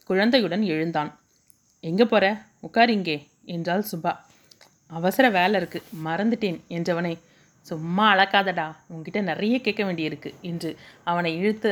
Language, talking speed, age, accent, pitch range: Tamil, 110 wpm, 30-49, native, 170-215 Hz